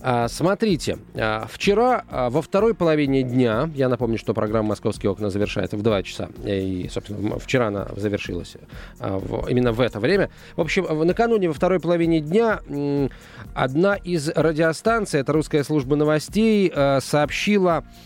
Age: 20-39